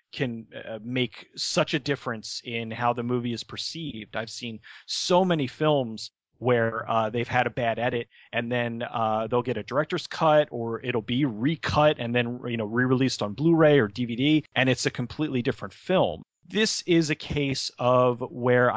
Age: 30-49